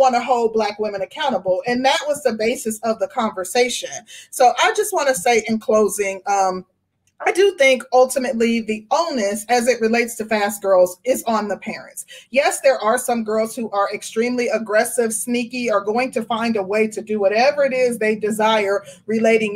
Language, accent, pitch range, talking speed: English, American, 205-265 Hz, 195 wpm